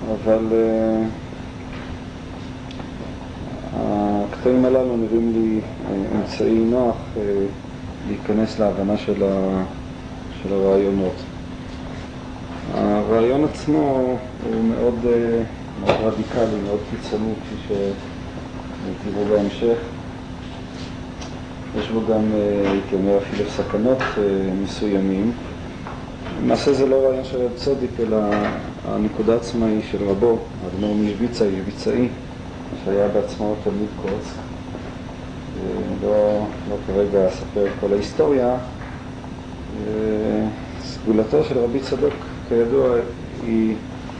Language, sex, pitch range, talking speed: Hebrew, male, 100-120 Hz, 90 wpm